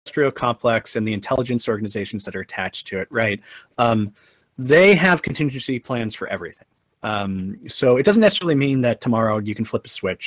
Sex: male